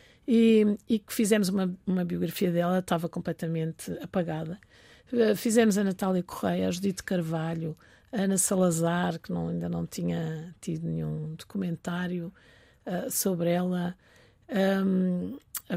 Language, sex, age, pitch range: Portuguese, female, 50-69, 175-215 Hz